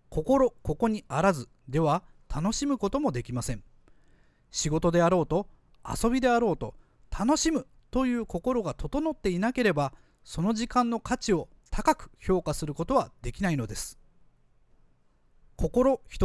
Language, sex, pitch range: Japanese, male, 140-225 Hz